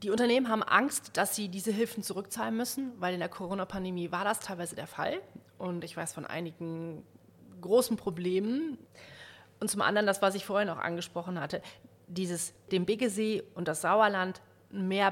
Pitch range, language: 175-220 Hz, German